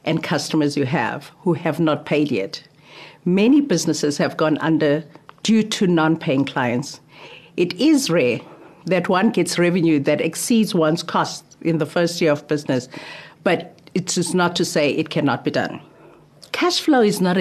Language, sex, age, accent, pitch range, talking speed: English, female, 50-69, South African, 150-185 Hz, 170 wpm